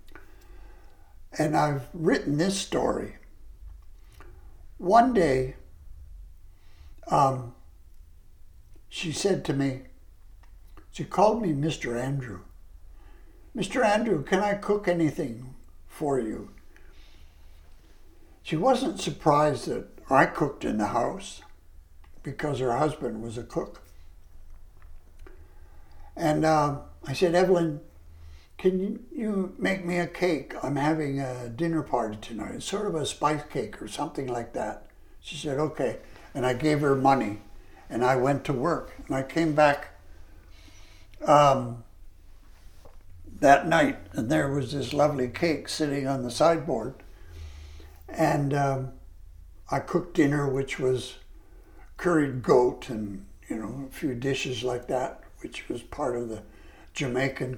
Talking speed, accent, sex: 125 wpm, American, male